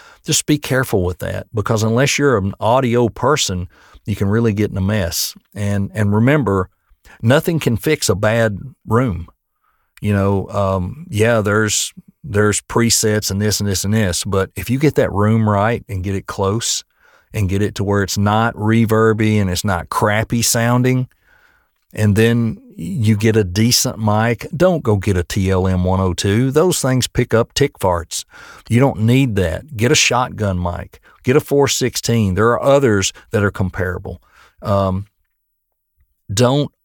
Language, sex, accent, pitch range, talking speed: English, male, American, 100-120 Hz, 165 wpm